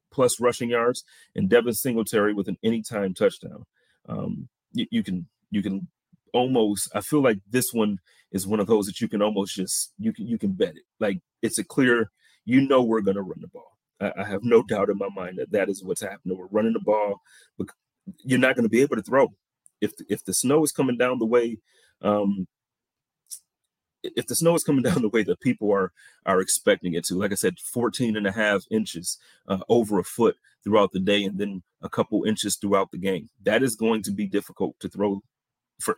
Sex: male